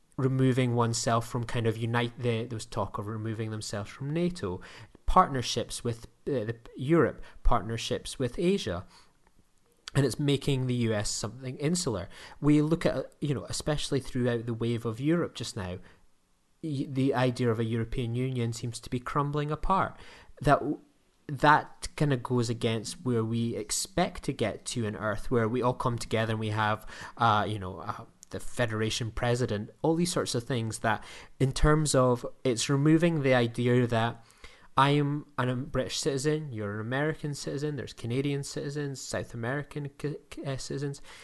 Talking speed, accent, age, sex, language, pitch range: 165 wpm, British, 20-39, male, English, 115-140 Hz